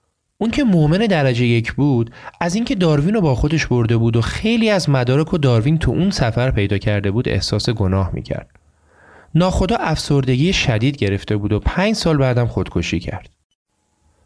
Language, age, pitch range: Persian, 30-49, 110-155 Hz